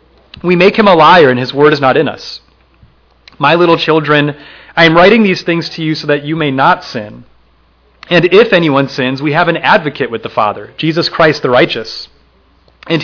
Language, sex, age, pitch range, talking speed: English, male, 30-49, 120-180 Hz, 200 wpm